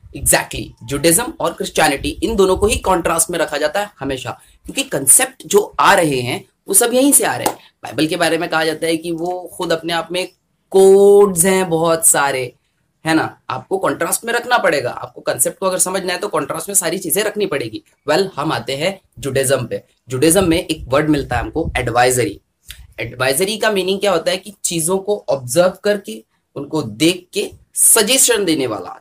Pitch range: 155-200 Hz